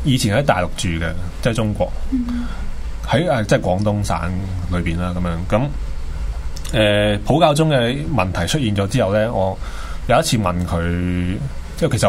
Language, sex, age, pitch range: Chinese, male, 20-39, 90-135 Hz